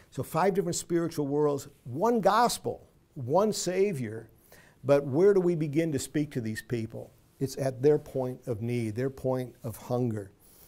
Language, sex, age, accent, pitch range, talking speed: English, male, 50-69, American, 120-145 Hz, 165 wpm